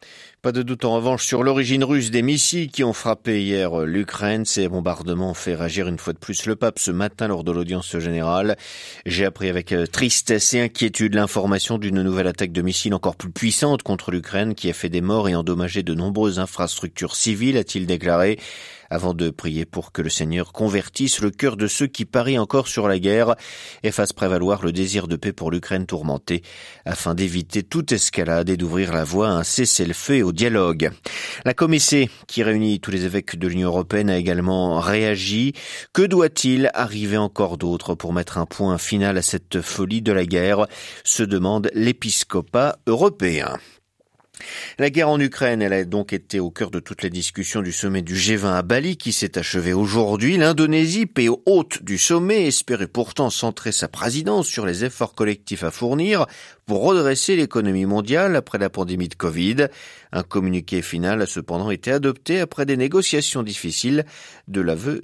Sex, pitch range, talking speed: male, 90-120 Hz, 185 wpm